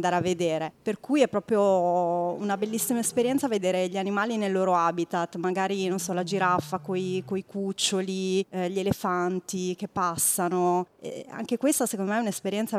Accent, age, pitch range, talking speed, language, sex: native, 30-49, 170-195 Hz, 165 wpm, Italian, female